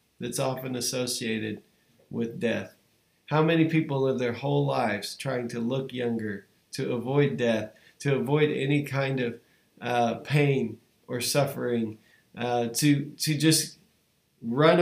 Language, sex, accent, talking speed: English, male, American, 135 wpm